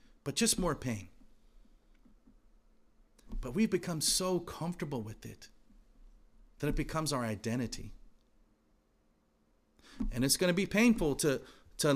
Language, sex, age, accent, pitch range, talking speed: English, male, 40-59, American, 110-180 Hz, 120 wpm